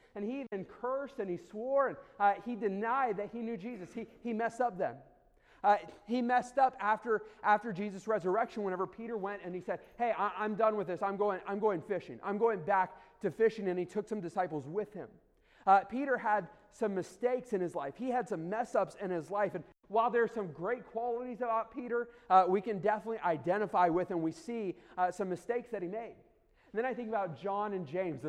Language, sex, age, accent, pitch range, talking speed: English, male, 40-59, American, 185-220 Hz, 220 wpm